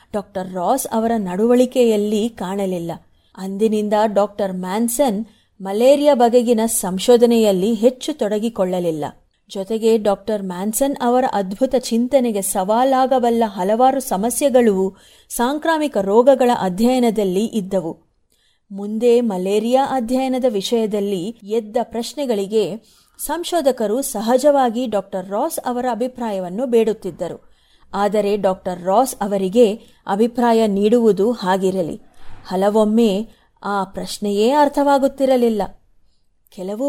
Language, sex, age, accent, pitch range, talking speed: Kannada, female, 30-49, native, 200-255 Hz, 80 wpm